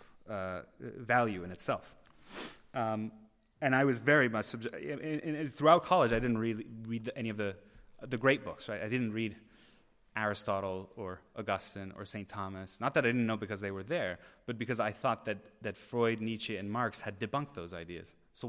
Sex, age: male, 20-39